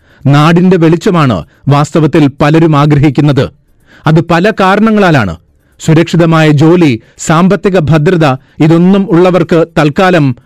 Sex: male